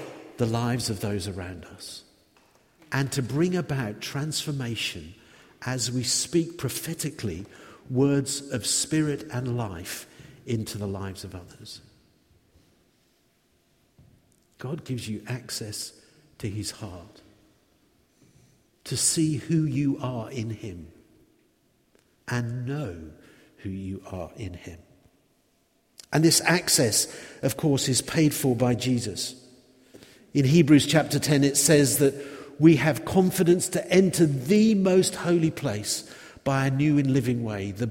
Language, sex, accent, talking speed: Danish, male, British, 125 wpm